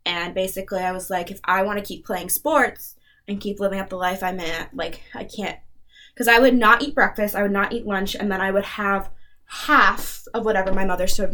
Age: 10-29